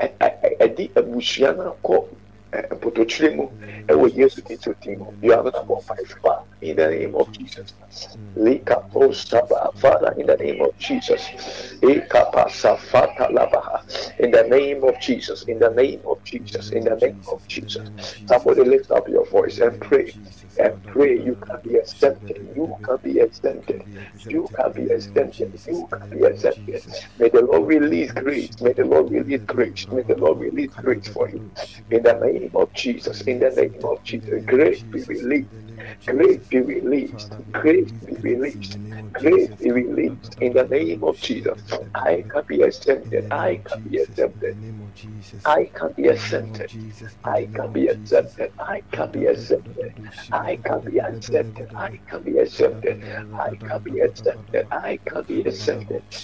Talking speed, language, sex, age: 155 wpm, English, male, 60-79